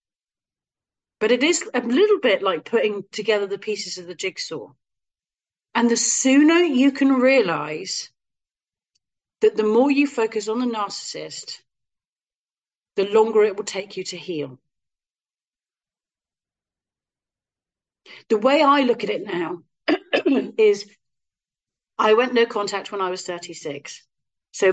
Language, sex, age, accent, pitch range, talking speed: English, female, 40-59, British, 175-235 Hz, 130 wpm